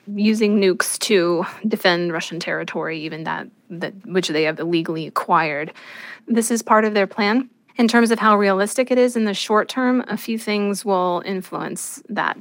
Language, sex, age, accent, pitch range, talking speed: English, female, 20-39, American, 180-215 Hz, 180 wpm